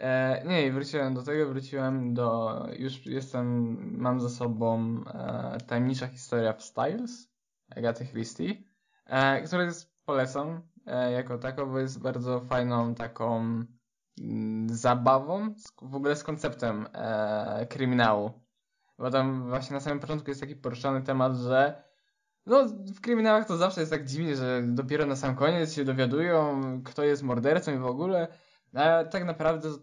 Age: 10-29